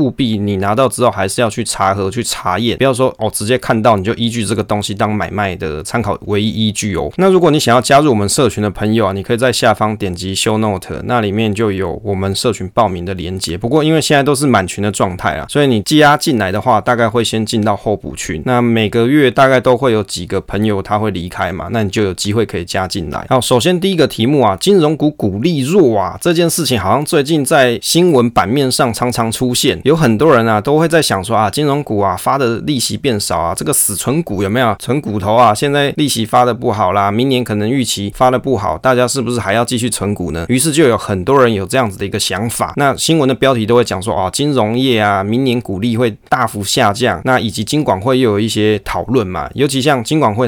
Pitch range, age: 100-130 Hz, 20-39